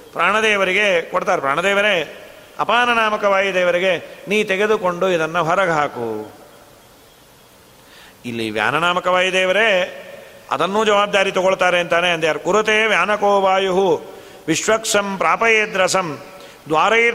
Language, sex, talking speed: Kannada, male, 75 wpm